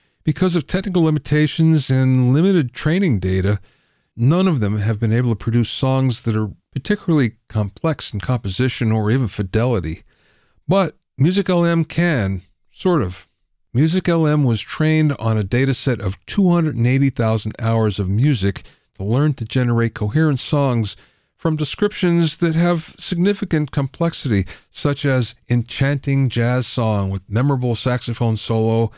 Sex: male